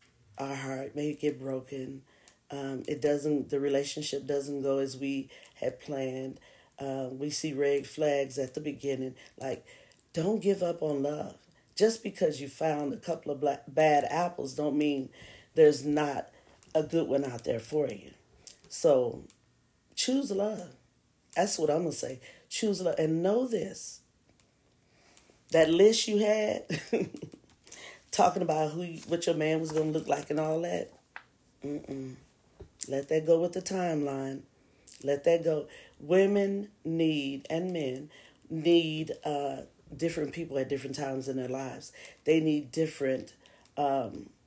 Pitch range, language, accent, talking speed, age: 135-165 Hz, English, American, 150 wpm, 40-59